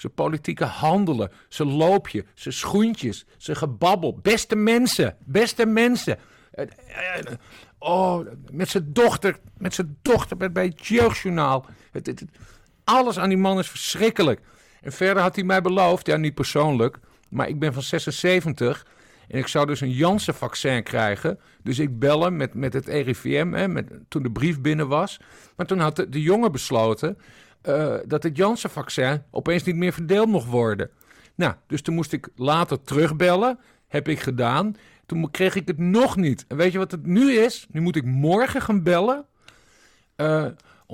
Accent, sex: Dutch, male